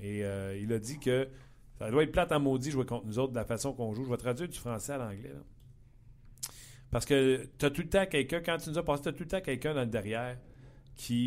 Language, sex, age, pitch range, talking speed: French, male, 40-59, 115-135 Hz, 270 wpm